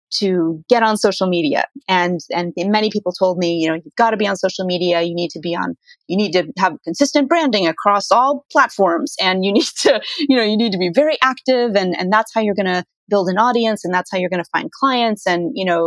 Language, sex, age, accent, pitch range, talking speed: English, female, 30-49, American, 180-230 Hz, 255 wpm